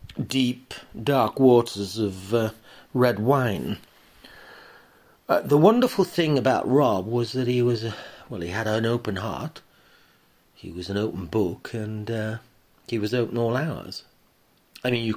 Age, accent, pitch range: 40-59, British, 100-125 Hz